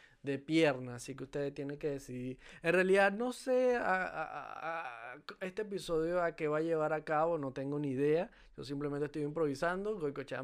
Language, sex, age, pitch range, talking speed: Spanish, male, 20-39, 145-200 Hz, 195 wpm